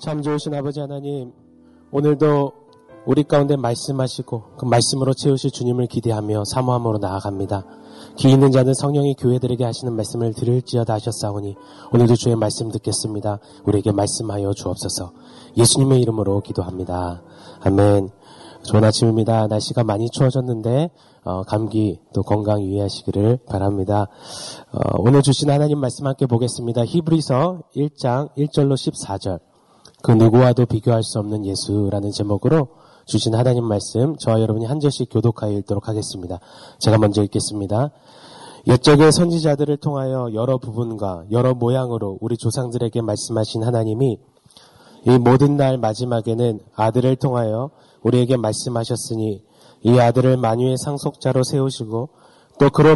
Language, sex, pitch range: Korean, male, 105-135 Hz